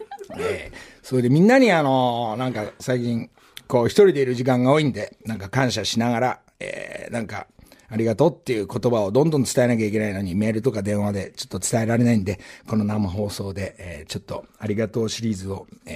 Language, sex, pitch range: Japanese, male, 115-145 Hz